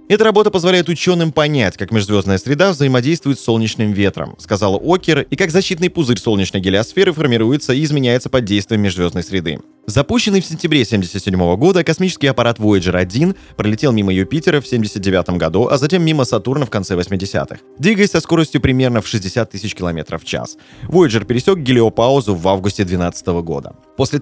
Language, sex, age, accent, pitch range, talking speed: Russian, male, 20-39, native, 100-155 Hz, 165 wpm